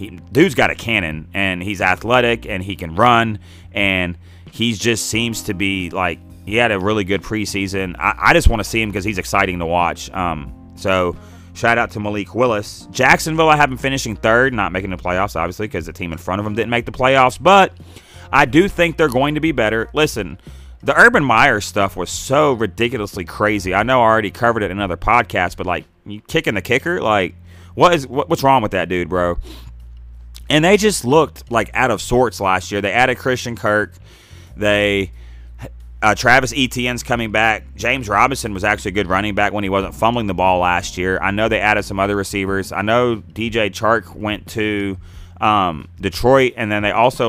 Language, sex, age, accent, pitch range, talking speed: English, male, 30-49, American, 90-120 Hz, 210 wpm